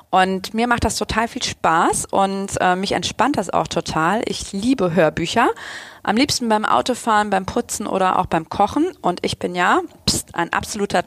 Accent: German